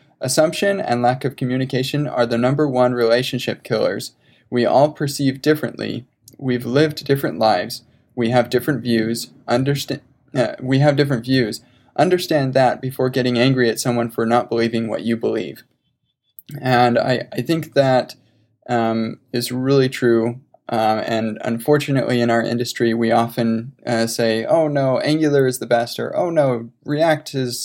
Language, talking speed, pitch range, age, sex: English, 155 wpm, 115-135 Hz, 20-39, male